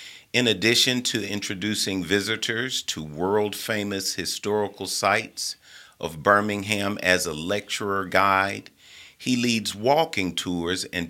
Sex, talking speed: male, 110 wpm